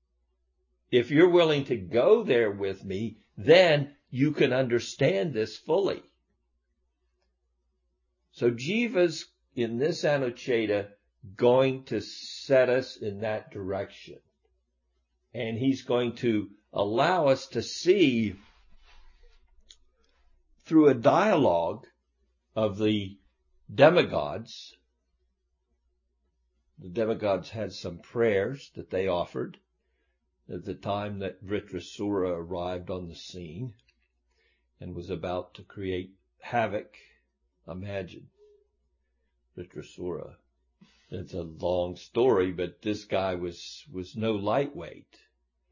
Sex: male